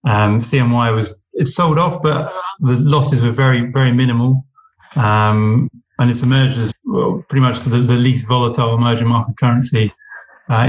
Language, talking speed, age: English, 175 wpm, 30-49